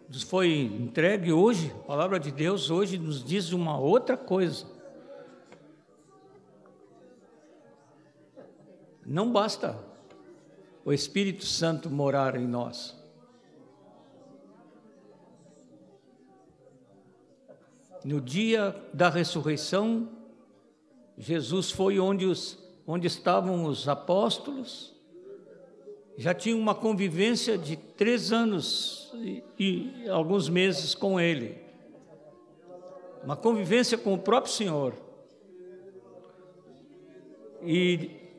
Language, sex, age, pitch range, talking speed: Portuguese, male, 60-79, 165-220 Hz, 85 wpm